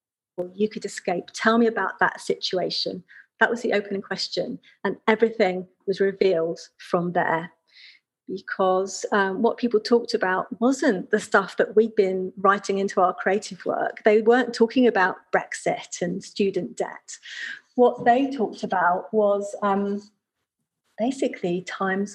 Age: 40-59